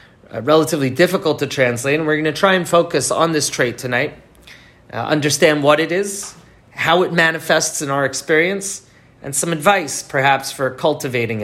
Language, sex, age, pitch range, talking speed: English, male, 30-49, 130-165 Hz, 175 wpm